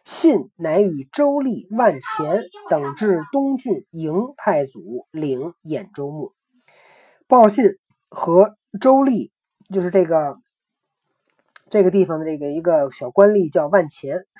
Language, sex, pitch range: Chinese, male, 155-240 Hz